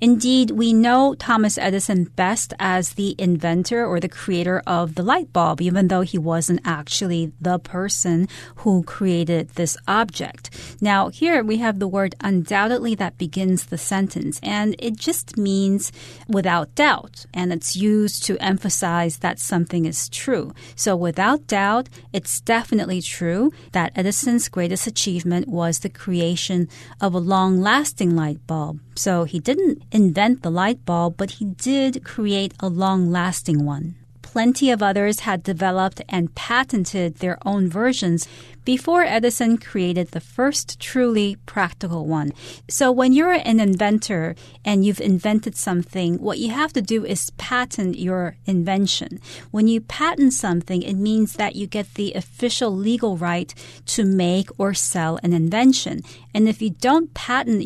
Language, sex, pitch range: Chinese, female, 175-220 Hz